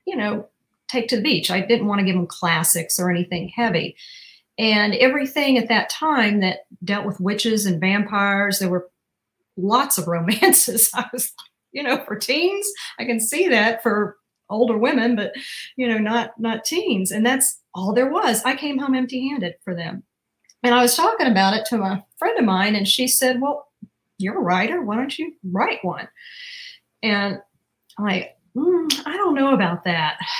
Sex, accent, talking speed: female, American, 185 wpm